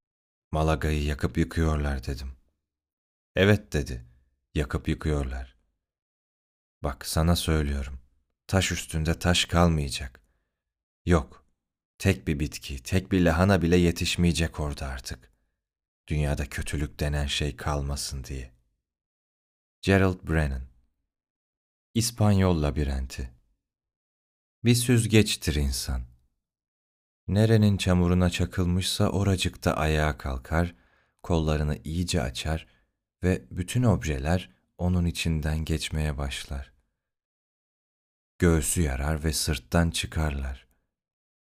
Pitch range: 70-90 Hz